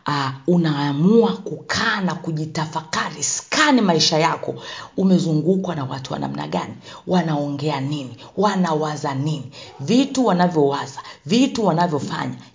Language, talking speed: Swahili, 105 wpm